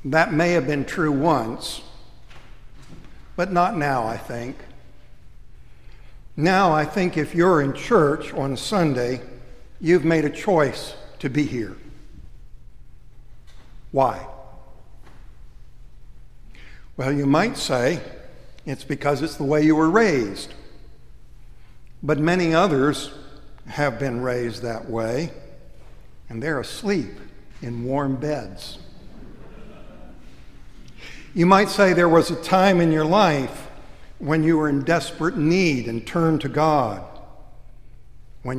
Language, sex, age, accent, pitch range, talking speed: English, male, 60-79, American, 115-155 Hz, 115 wpm